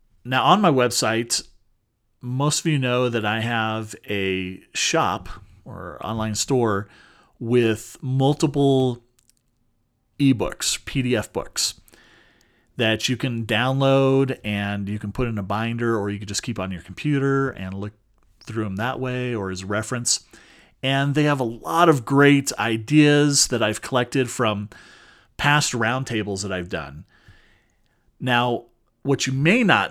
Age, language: 40-59, English